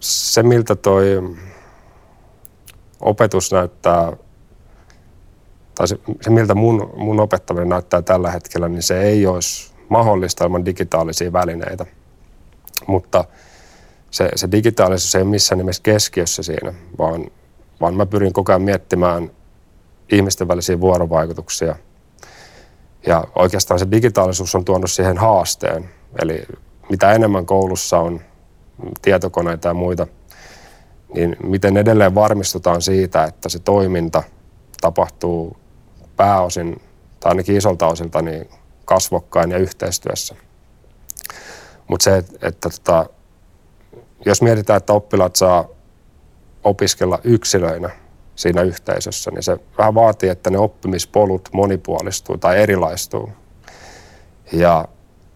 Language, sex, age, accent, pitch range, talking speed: Finnish, male, 30-49, native, 85-100 Hz, 110 wpm